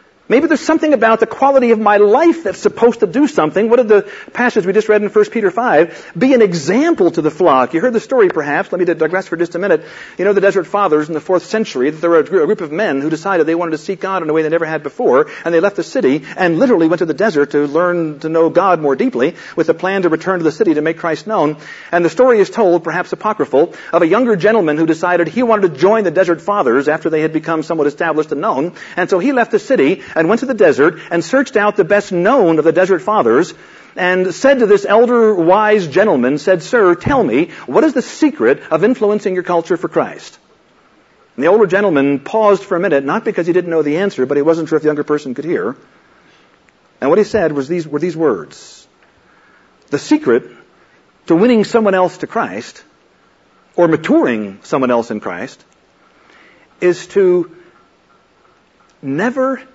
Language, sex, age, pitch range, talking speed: English, male, 50-69, 160-215 Hz, 220 wpm